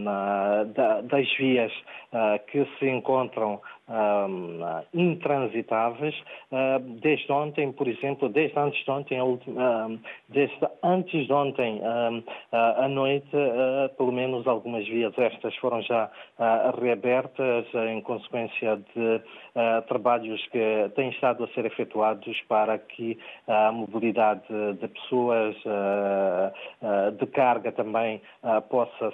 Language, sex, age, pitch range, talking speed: Portuguese, male, 20-39, 110-130 Hz, 110 wpm